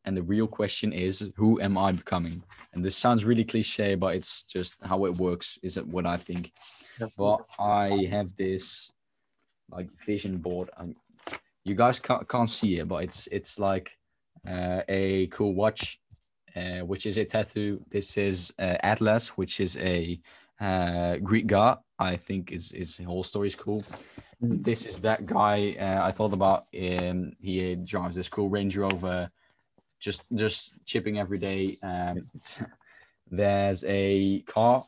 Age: 10-29